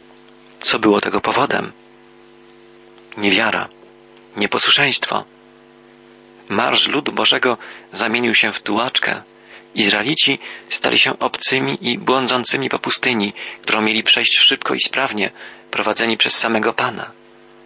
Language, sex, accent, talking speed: Polish, male, native, 105 wpm